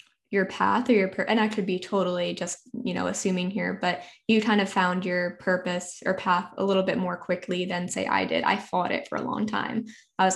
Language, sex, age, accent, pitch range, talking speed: English, female, 10-29, American, 180-220 Hz, 245 wpm